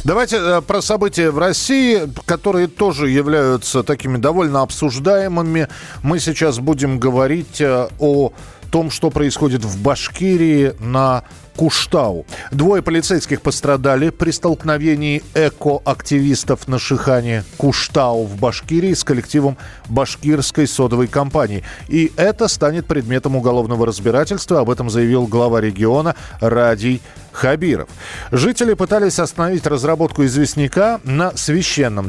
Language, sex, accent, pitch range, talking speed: Russian, male, native, 120-160 Hz, 110 wpm